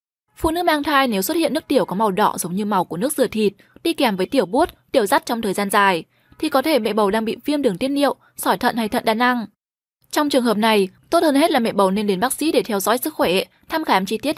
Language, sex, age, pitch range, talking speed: Vietnamese, female, 10-29, 210-280 Hz, 290 wpm